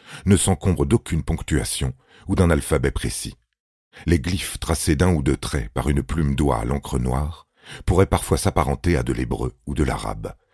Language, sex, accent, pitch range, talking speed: French, male, French, 70-90 Hz, 175 wpm